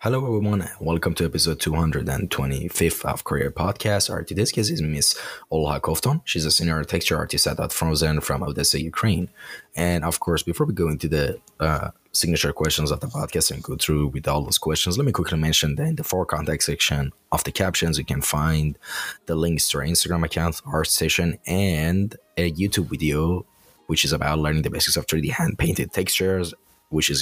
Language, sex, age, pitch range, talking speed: English, male, 20-39, 75-90 Hz, 200 wpm